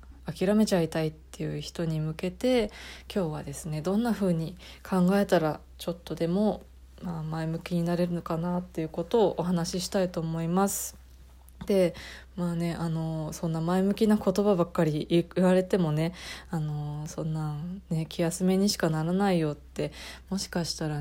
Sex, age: female, 20-39